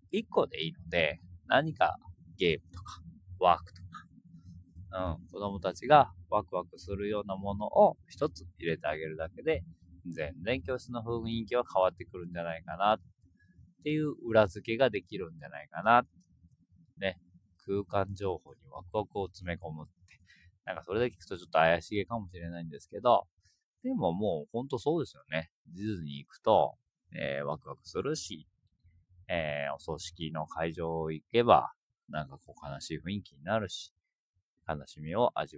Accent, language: native, Japanese